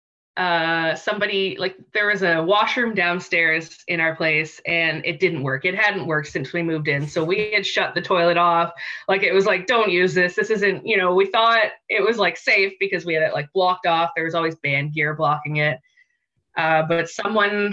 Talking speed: 215 wpm